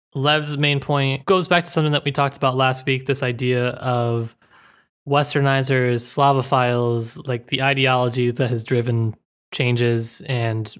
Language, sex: English, male